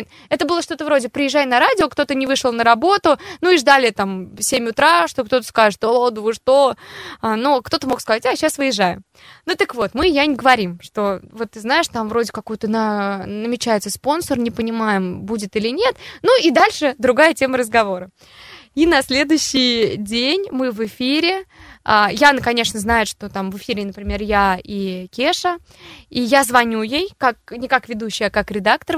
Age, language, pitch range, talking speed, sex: 20-39, Russian, 230-315 Hz, 180 wpm, female